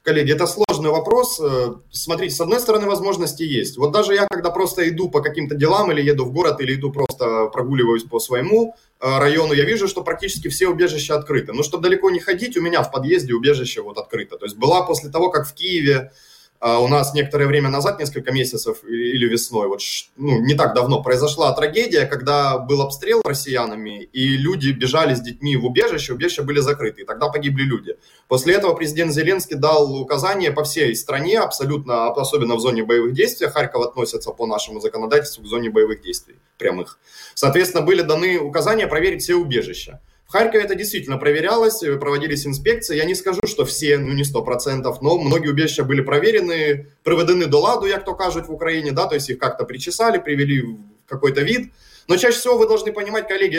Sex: male